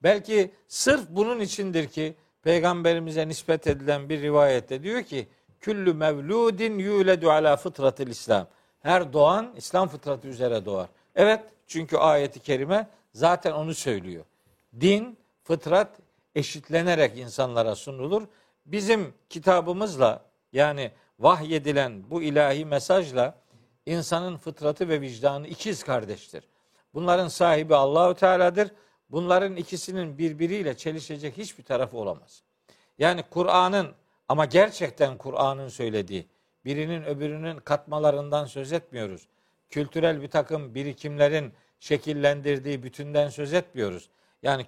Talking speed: 105 wpm